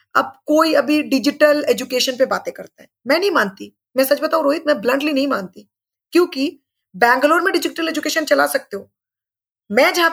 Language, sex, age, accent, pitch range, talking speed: Hindi, female, 20-39, native, 240-315 Hz, 180 wpm